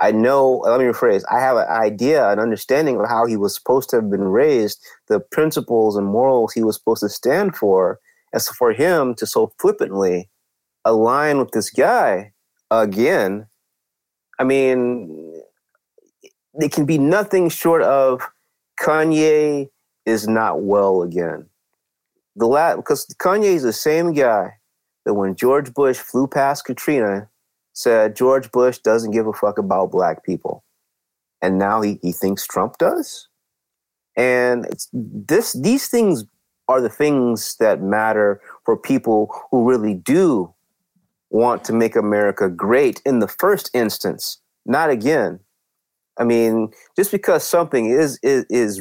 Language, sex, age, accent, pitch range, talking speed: English, male, 30-49, American, 110-185 Hz, 150 wpm